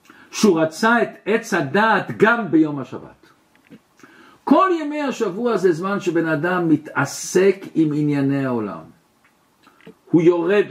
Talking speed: 120 wpm